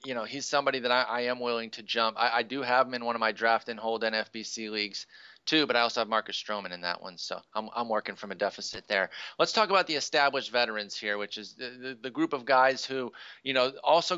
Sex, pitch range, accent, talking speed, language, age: male, 115-140 Hz, American, 260 wpm, English, 30-49